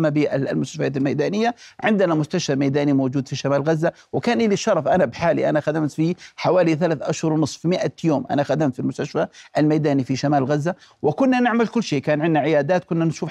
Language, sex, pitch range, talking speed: Arabic, male, 150-195 Hz, 180 wpm